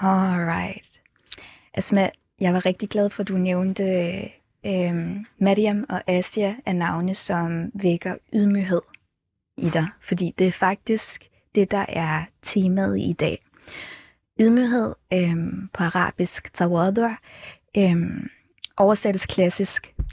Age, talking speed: 20-39, 115 wpm